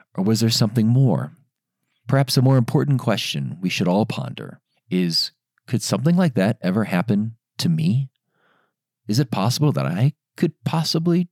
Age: 40-59